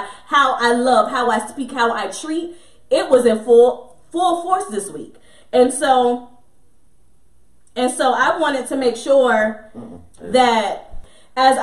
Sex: female